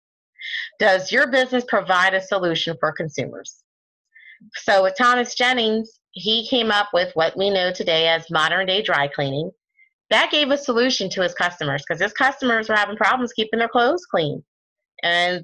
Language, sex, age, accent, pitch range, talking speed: English, female, 30-49, American, 175-235 Hz, 165 wpm